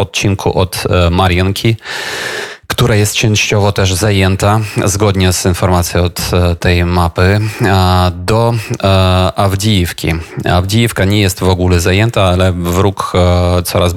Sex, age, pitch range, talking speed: male, 20-39, 90-105 Hz, 105 wpm